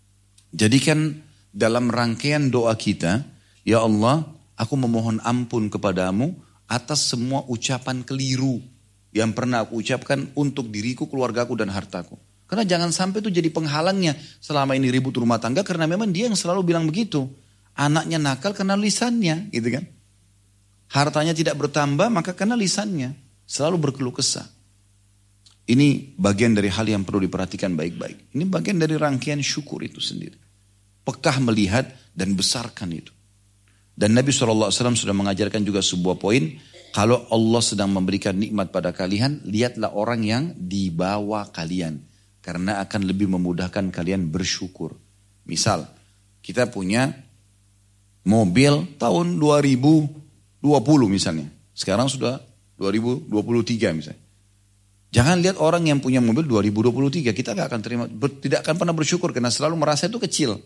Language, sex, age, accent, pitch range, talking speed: Indonesian, male, 30-49, native, 100-145 Hz, 130 wpm